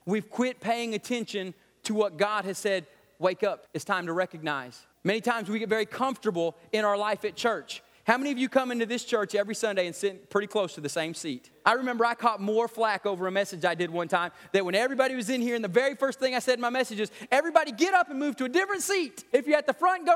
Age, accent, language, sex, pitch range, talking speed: 30-49, American, English, male, 205-280 Hz, 265 wpm